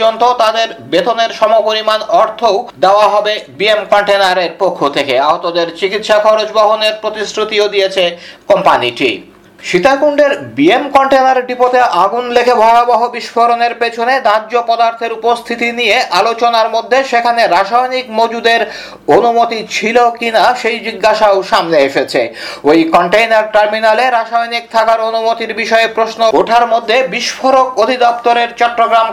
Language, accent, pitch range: Bengali, native, 210-235 Hz